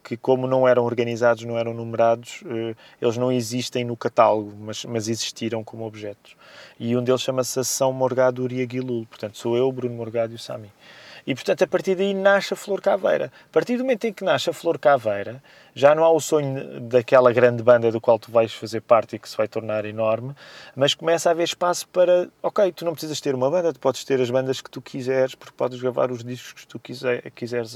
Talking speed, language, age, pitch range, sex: 220 wpm, Portuguese, 20-39, 115-135 Hz, male